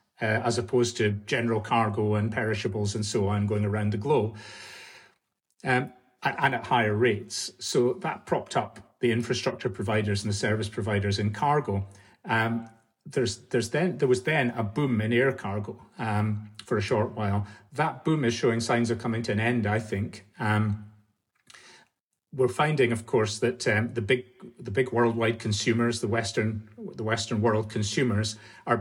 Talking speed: 170 wpm